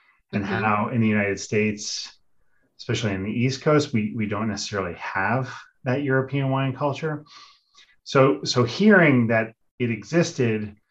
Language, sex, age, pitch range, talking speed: English, male, 30-49, 100-125 Hz, 145 wpm